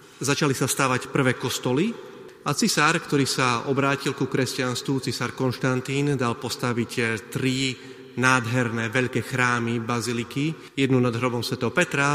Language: Slovak